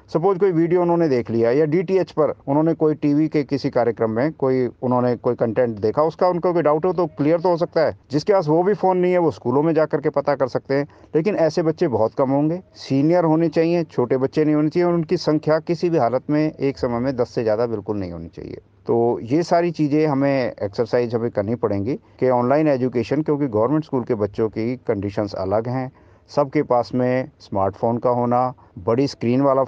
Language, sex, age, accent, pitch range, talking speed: Hindi, male, 50-69, native, 120-160 Hz, 220 wpm